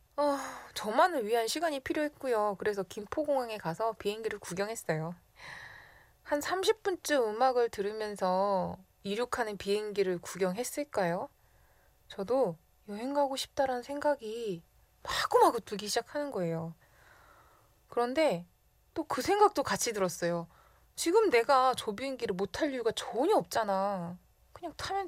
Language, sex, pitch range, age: Korean, female, 185-250 Hz, 20-39